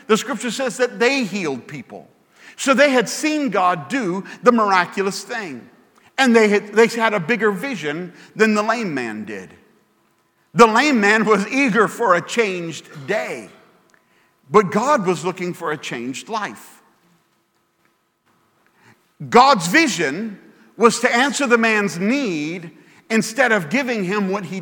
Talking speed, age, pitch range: 145 wpm, 50-69, 185-245 Hz